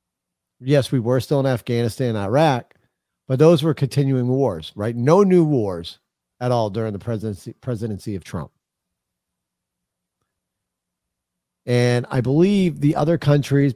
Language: English